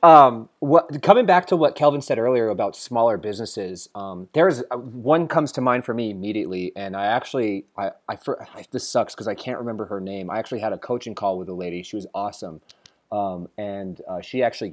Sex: male